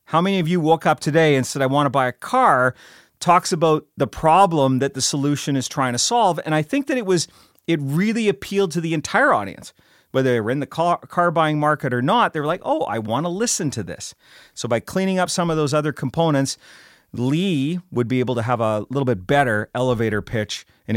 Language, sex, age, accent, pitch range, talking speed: English, male, 40-59, American, 125-165 Hz, 230 wpm